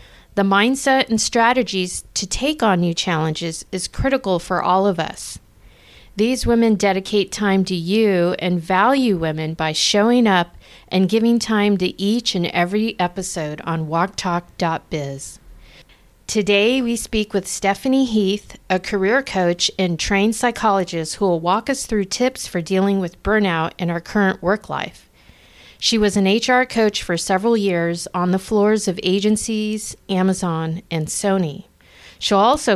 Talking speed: 150 wpm